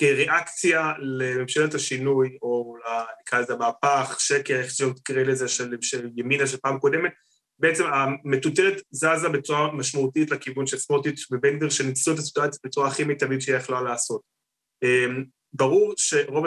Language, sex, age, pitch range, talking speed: Hebrew, male, 20-39, 130-160 Hz, 145 wpm